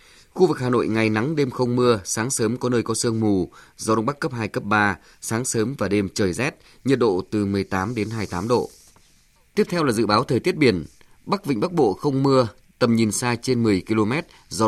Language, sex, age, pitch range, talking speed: Vietnamese, male, 20-39, 105-130 Hz, 240 wpm